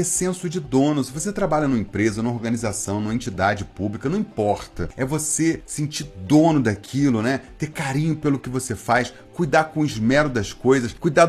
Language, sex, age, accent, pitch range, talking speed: Portuguese, male, 40-59, Brazilian, 125-190 Hz, 180 wpm